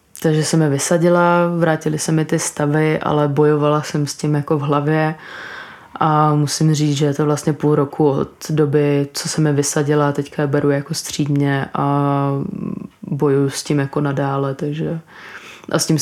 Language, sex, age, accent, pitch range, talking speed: Czech, female, 20-39, native, 145-155 Hz, 175 wpm